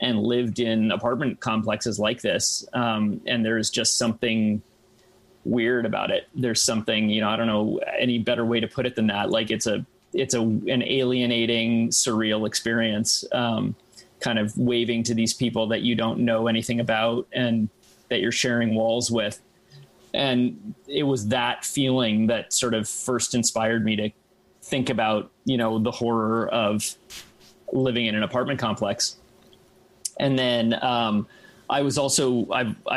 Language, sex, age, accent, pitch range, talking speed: English, male, 30-49, American, 110-125 Hz, 165 wpm